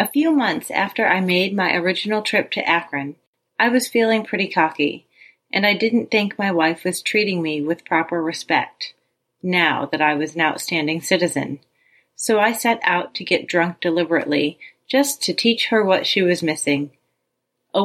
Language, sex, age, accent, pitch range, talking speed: English, female, 30-49, American, 160-200 Hz, 175 wpm